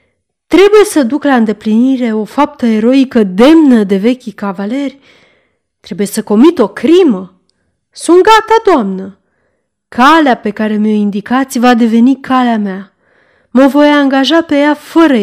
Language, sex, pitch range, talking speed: Romanian, female, 200-290 Hz, 140 wpm